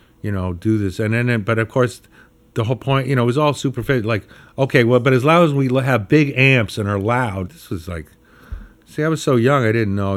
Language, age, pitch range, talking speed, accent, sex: English, 50-69, 100-120 Hz, 255 wpm, American, male